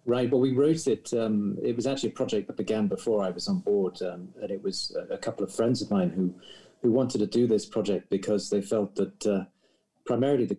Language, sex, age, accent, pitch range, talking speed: Portuguese, male, 40-59, British, 95-115 Hz, 240 wpm